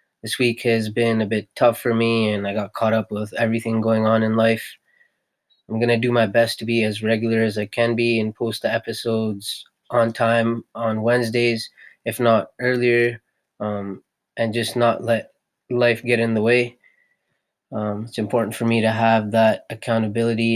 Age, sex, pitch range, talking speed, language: 20-39, male, 110-120 Hz, 185 wpm, English